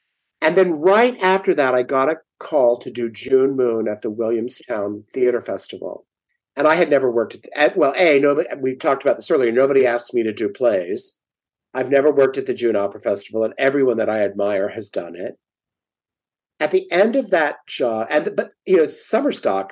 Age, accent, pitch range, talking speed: 50-69, American, 120-165 Hz, 190 wpm